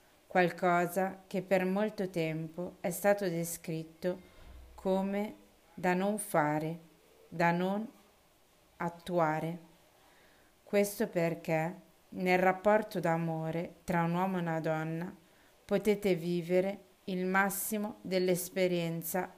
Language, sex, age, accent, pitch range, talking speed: Italian, female, 30-49, native, 165-190 Hz, 95 wpm